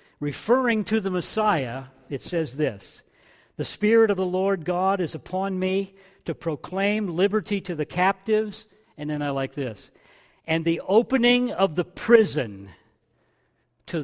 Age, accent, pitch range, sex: 50-69, American, 140-195 Hz, male